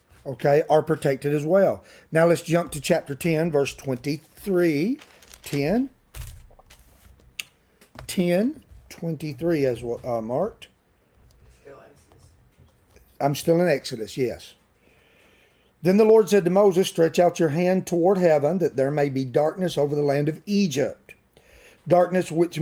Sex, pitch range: male, 145-200 Hz